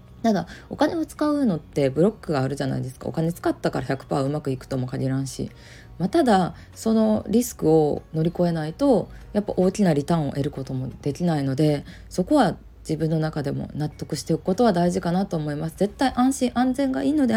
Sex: female